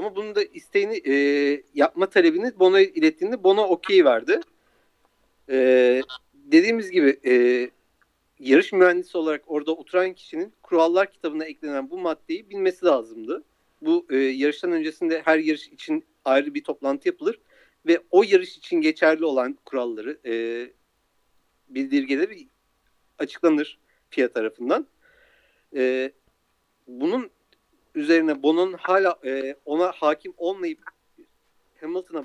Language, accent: Turkish, native